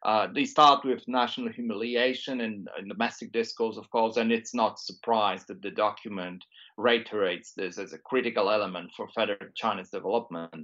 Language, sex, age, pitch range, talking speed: English, male, 40-59, 115-145 Hz, 170 wpm